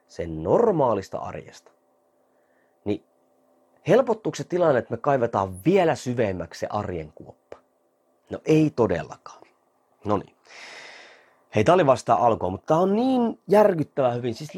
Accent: native